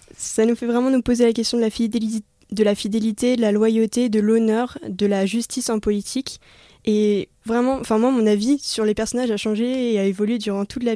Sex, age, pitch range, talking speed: female, 10-29, 205-235 Hz, 225 wpm